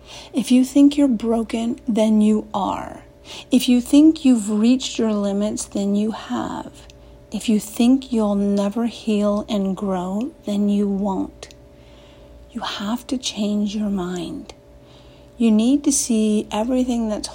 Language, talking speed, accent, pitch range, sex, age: English, 140 wpm, American, 200-240 Hz, female, 50-69